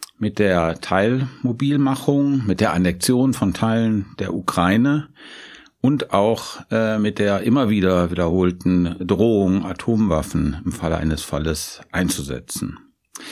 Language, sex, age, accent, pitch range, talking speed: German, male, 50-69, German, 90-130 Hz, 115 wpm